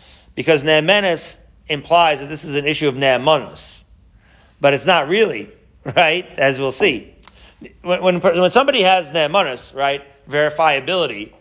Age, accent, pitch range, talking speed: 40-59, American, 135-170 Hz, 135 wpm